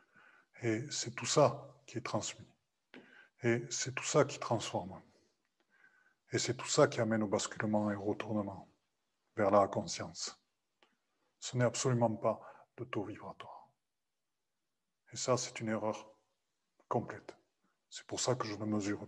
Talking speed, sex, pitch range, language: 145 wpm, male, 110-130 Hz, French